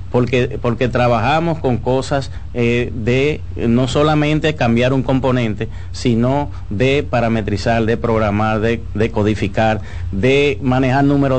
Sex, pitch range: male, 105-130 Hz